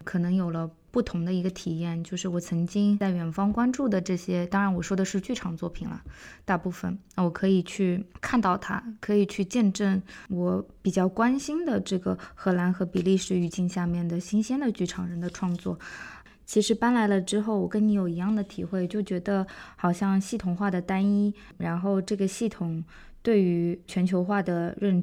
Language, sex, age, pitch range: Chinese, female, 20-39, 180-215 Hz